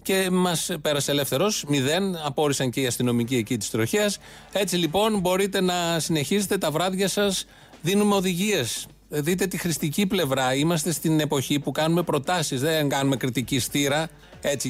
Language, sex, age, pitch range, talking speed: Greek, male, 30-49, 130-175 Hz, 150 wpm